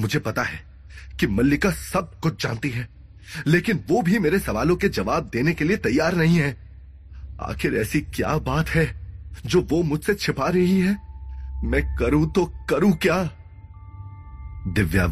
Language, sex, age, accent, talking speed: Hindi, male, 30-49, native, 155 wpm